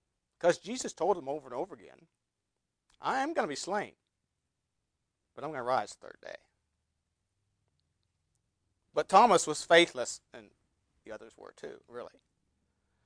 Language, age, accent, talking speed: English, 50-69, American, 145 wpm